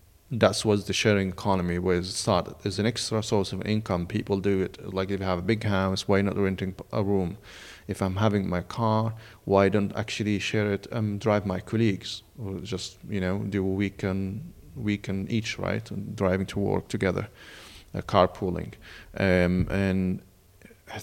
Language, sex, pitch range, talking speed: English, male, 95-110 Hz, 180 wpm